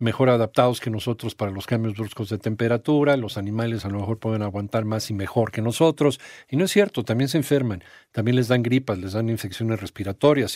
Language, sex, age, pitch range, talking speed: Spanish, male, 50-69, 110-140 Hz, 210 wpm